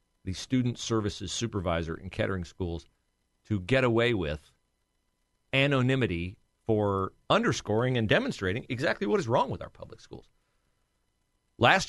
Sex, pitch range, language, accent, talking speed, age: male, 100-135 Hz, English, American, 125 wpm, 40-59